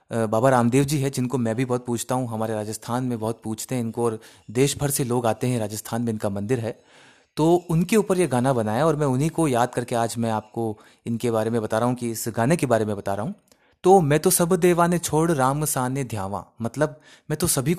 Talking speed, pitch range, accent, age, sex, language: 245 wpm, 115-155 Hz, native, 30-49, male, Hindi